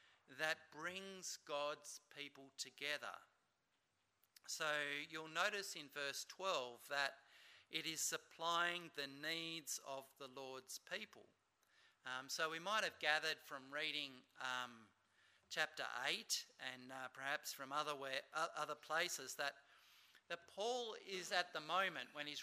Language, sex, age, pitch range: English, male, 50-69, 135-165 Hz